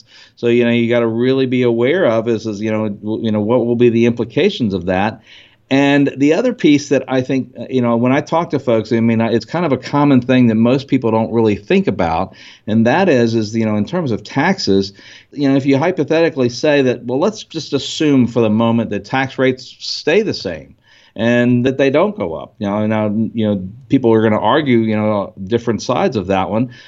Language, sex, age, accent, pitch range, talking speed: English, male, 50-69, American, 115-135 Hz, 235 wpm